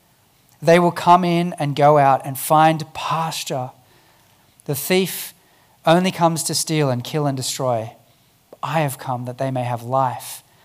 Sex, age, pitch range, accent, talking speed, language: male, 40-59, 140-190 Hz, Australian, 160 wpm, English